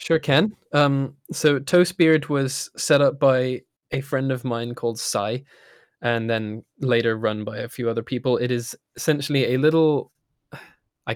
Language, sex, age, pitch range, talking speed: English, male, 20-39, 110-130 Hz, 160 wpm